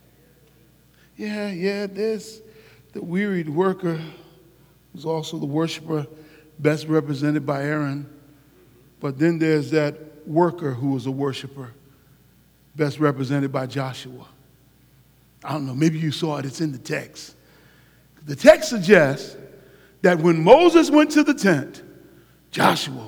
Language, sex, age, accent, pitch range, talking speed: English, male, 50-69, American, 150-220 Hz, 125 wpm